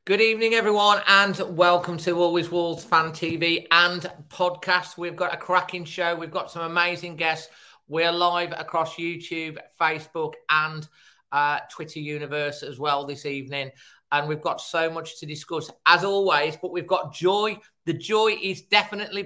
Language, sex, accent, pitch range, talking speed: English, male, British, 155-180 Hz, 160 wpm